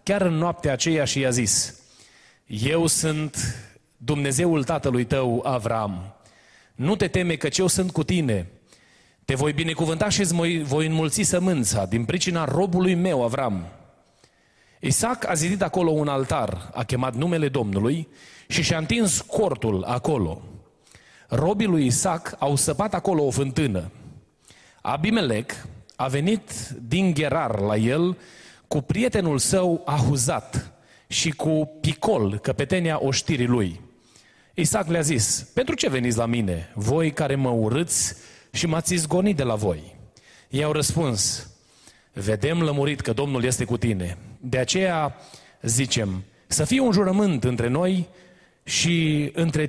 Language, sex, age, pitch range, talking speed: Romanian, male, 30-49, 120-170 Hz, 135 wpm